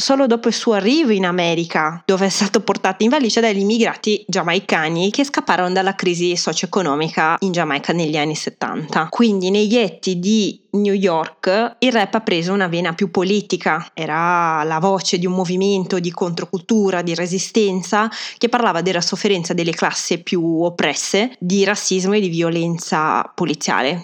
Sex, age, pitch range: female, 20-39, 170-205 Hz